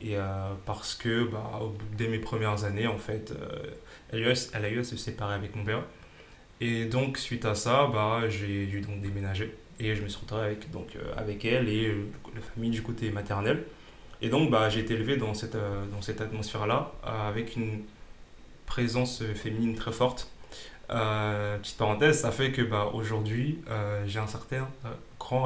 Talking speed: 195 wpm